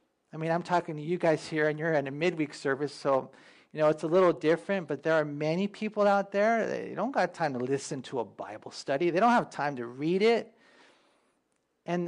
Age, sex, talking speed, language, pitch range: 40-59, male, 230 wpm, English, 145-195 Hz